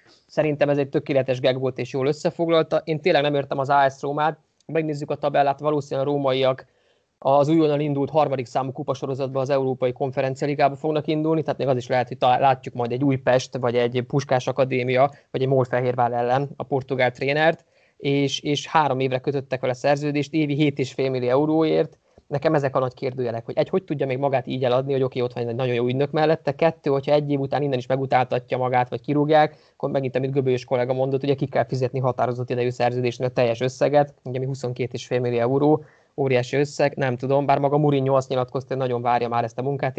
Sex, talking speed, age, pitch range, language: male, 205 wpm, 20-39, 125-145 Hz, Hungarian